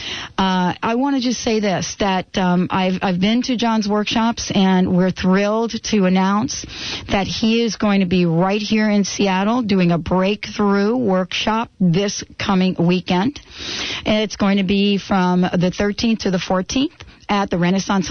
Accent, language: American, English